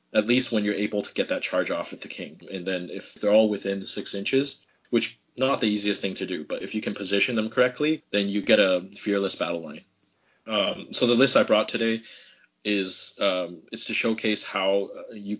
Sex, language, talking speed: male, English, 220 wpm